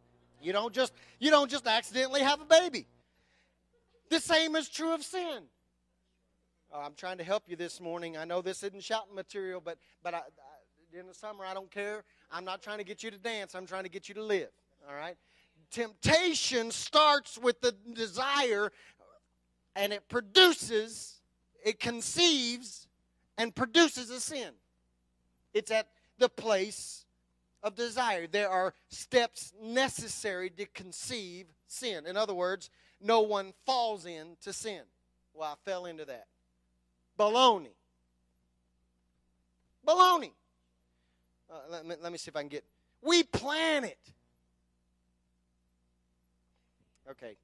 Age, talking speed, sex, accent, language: 40-59, 140 wpm, male, American, English